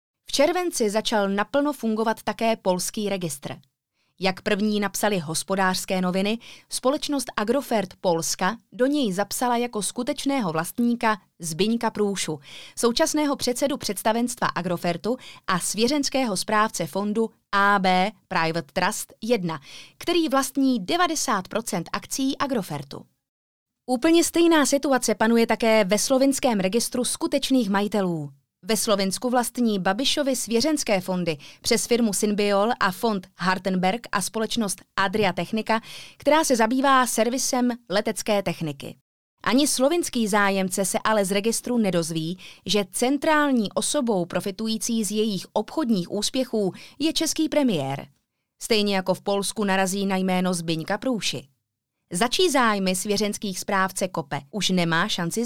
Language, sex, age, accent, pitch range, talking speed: Czech, female, 20-39, native, 185-250 Hz, 120 wpm